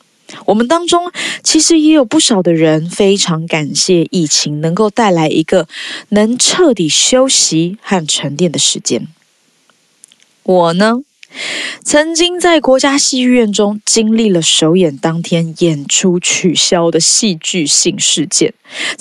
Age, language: 20-39, Chinese